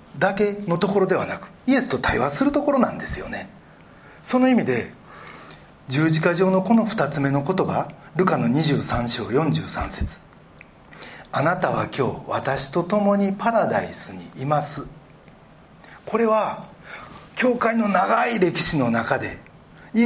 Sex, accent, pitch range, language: male, native, 145-225 Hz, Japanese